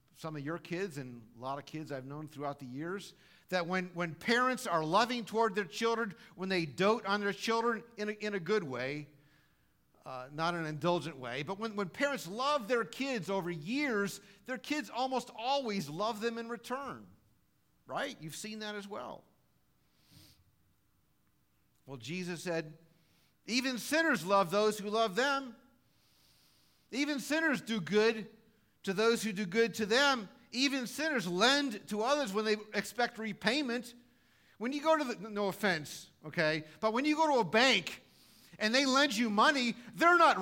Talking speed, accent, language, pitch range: 170 wpm, American, English, 175-265 Hz